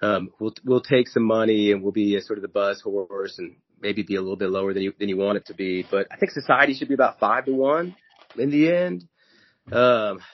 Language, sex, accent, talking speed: English, male, American, 255 wpm